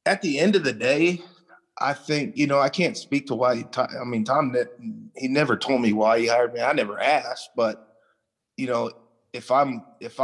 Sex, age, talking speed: male, 20-39, 210 wpm